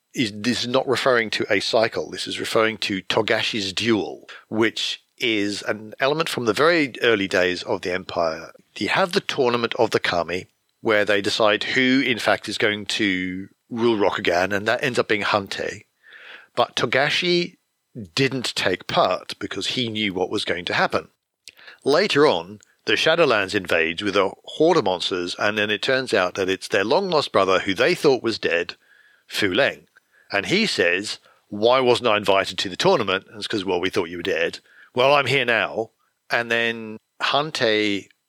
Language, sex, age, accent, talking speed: English, male, 50-69, British, 180 wpm